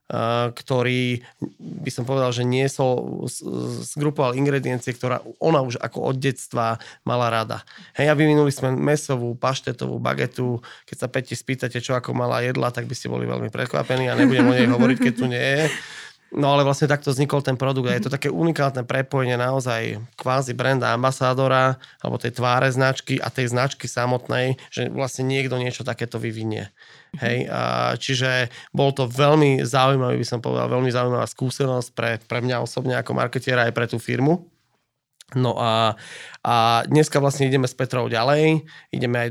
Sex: male